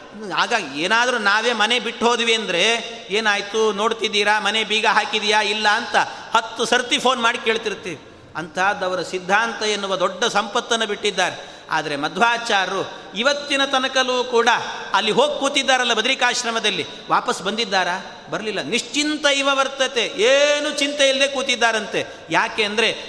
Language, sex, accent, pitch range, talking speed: Kannada, male, native, 210-265 Hz, 115 wpm